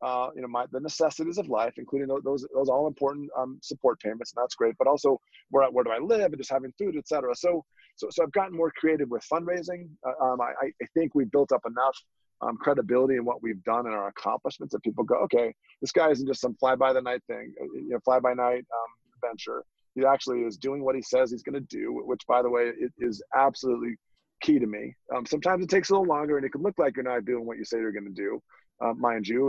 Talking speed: 255 wpm